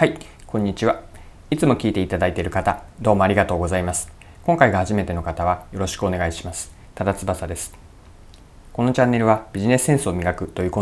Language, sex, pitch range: Japanese, male, 85-120 Hz